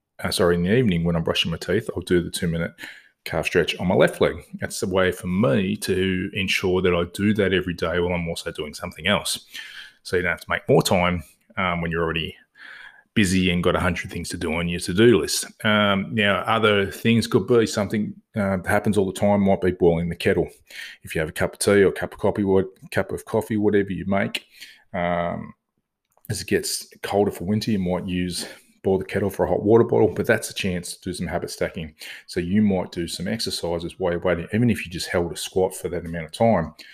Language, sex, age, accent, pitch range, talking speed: English, male, 20-39, Australian, 90-105 Hz, 240 wpm